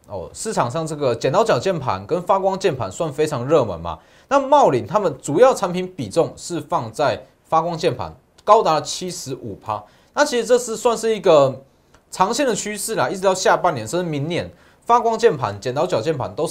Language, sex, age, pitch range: Chinese, male, 30-49, 130-210 Hz